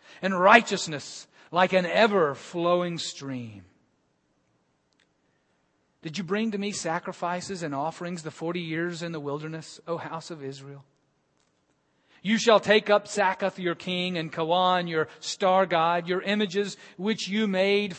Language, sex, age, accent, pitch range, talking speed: English, male, 40-59, American, 140-190 Hz, 135 wpm